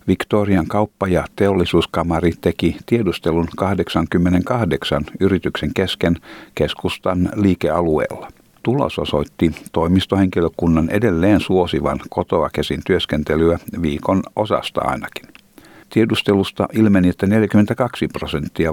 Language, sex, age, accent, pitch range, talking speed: Finnish, male, 60-79, native, 85-100 Hz, 85 wpm